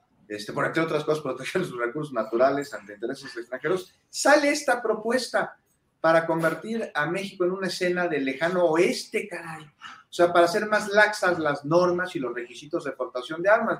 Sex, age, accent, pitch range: male, 40-59, Mexican, 130-195 Hz